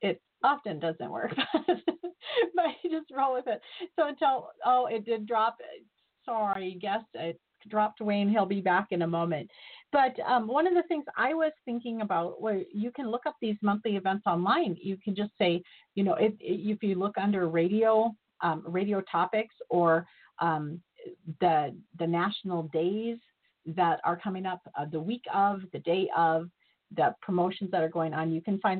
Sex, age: female, 40-59